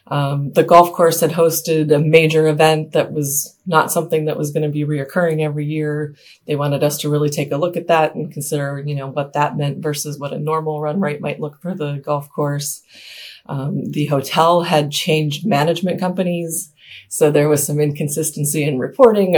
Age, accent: 30-49, American